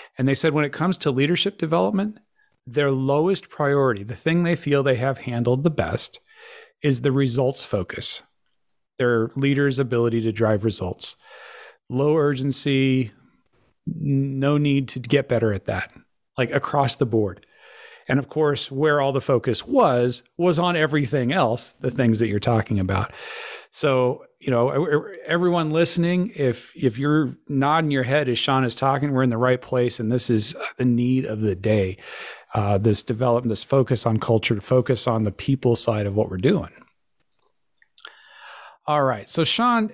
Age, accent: 40-59, American